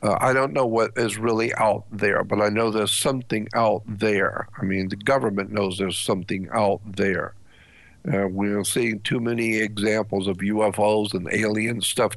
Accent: American